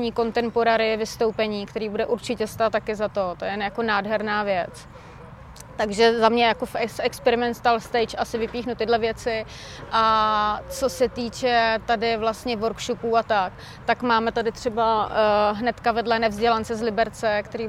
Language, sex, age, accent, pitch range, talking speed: Czech, female, 20-39, native, 215-235 Hz, 155 wpm